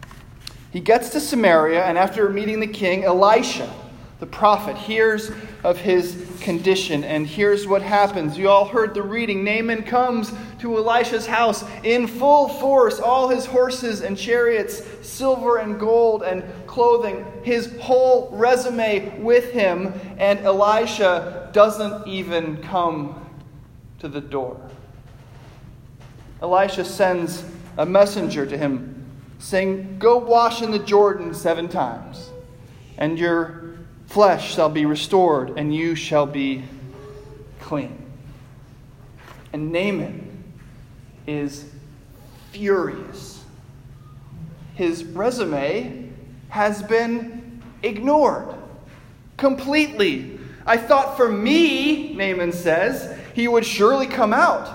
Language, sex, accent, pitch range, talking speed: English, male, American, 140-225 Hz, 110 wpm